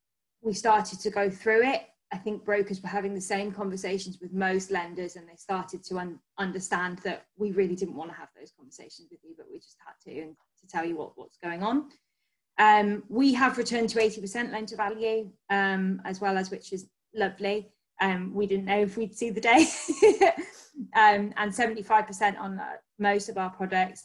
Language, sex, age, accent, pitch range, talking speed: English, female, 20-39, British, 185-215 Hz, 200 wpm